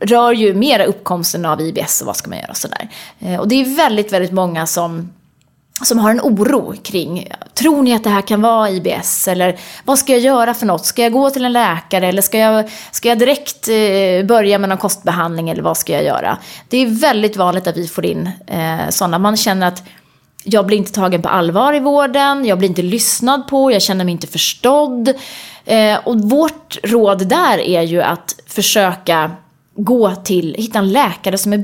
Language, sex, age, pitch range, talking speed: Swedish, female, 20-39, 180-230 Hz, 200 wpm